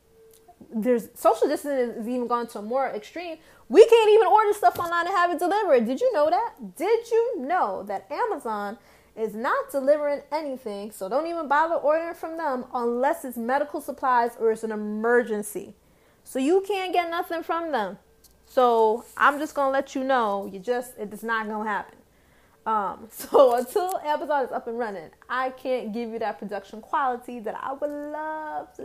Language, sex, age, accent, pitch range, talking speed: English, female, 20-39, American, 235-325 Hz, 180 wpm